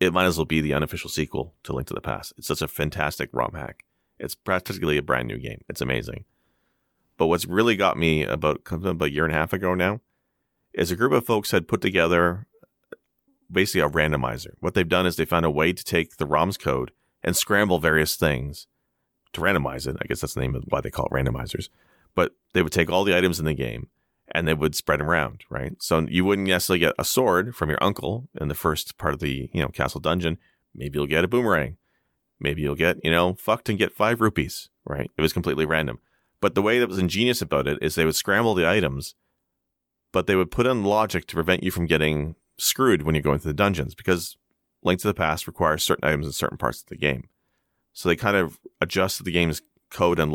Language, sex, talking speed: English, male, 230 wpm